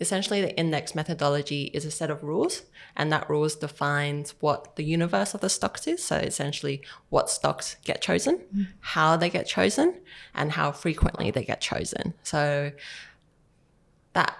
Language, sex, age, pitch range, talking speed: English, female, 20-39, 145-170 Hz, 160 wpm